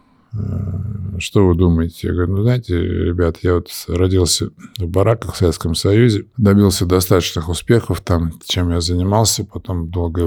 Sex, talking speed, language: male, 145 wpm, Russian